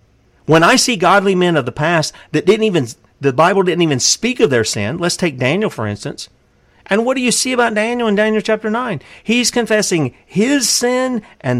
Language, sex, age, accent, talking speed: English, male, 50-69, American, 205 wpm